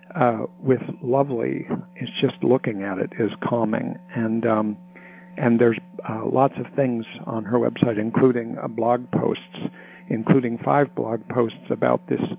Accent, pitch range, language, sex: American, 120-175 Hz, English, male